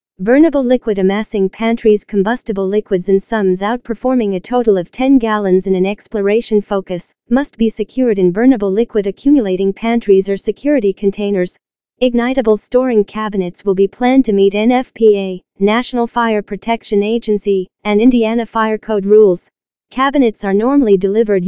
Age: 40-59